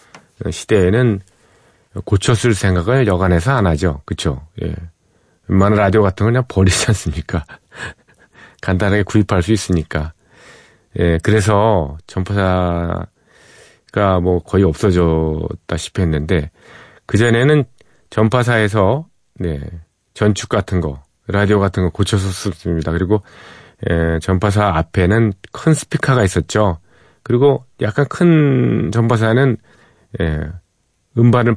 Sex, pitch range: male, 90-115 Hz